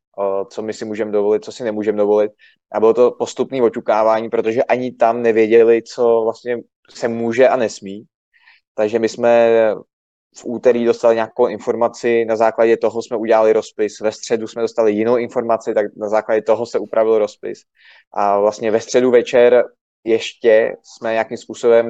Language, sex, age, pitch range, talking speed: Czech, male, 20-39, 105-115 Hz, 165 wpm